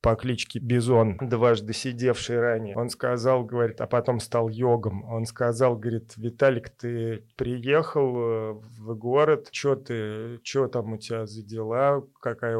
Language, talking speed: Russian, 145 wpm